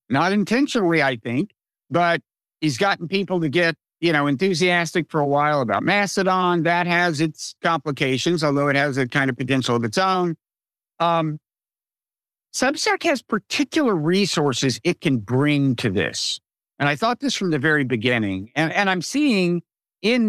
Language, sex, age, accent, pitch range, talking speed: English, male, 50-69, American, 145-190 Hz, 165 wpm